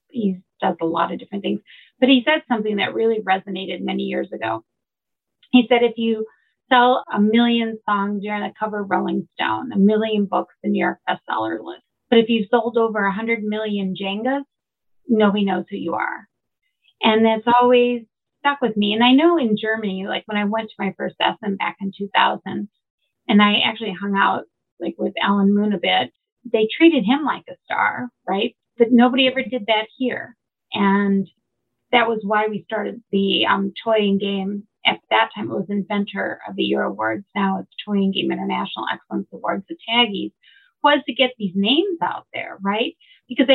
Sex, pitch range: female, 195-245 Hz